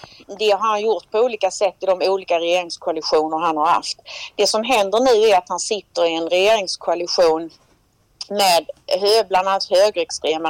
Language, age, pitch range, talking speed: Swedish, 40-59, 170-215 Hz, 165 wpm